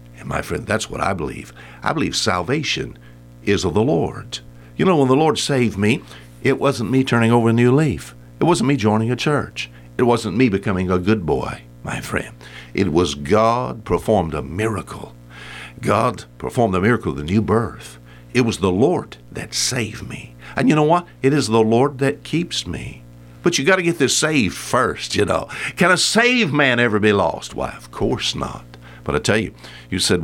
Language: English